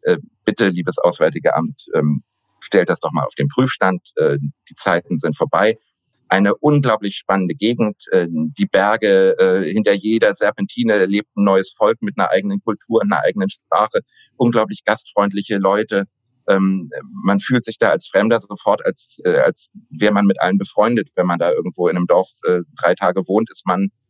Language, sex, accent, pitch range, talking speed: German, male, German, 90-115 Hz, 160 wpm